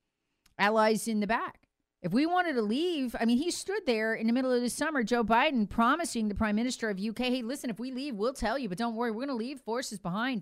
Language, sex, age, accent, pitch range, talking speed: English, female, 40-59, American, 205-275 Hz, 260 wpm